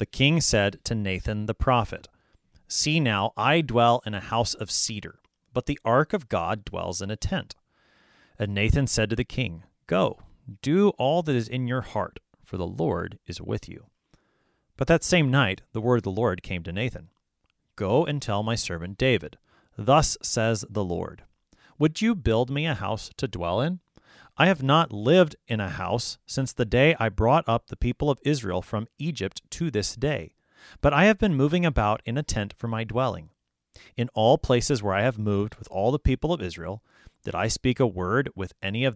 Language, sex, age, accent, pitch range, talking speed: English, male, 30-49, American, 100-145 Hz, 200 wpm